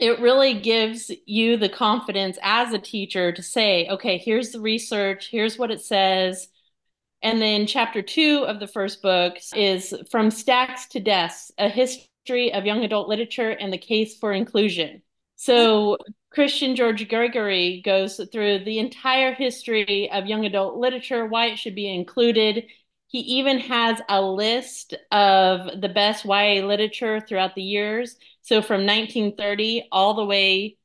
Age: 30-49